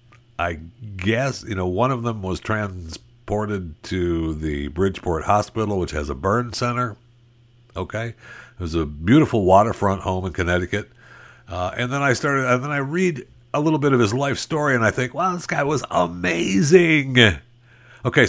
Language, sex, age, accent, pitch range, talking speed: English, male, 60-79, American, 80-120 Hz, 170 wpm